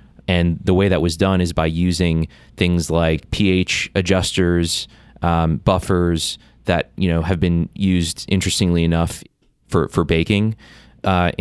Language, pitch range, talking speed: English, 80-90 Hz, 140 wpm